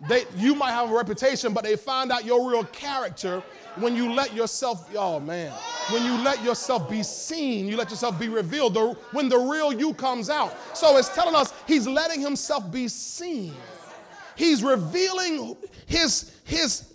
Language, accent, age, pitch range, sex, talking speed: English, American, 30-49, 245-325 Hz, male, 175 wpm